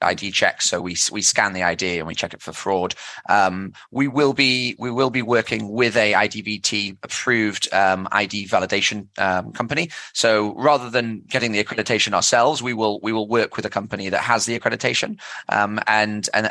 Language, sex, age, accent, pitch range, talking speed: English, male, 20-39, British, 100-120 Hz, 195 wpm